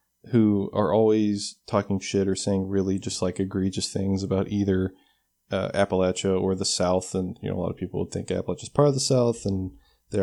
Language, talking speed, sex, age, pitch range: English, 210 wpm, male, 20-39, 95-110 Hz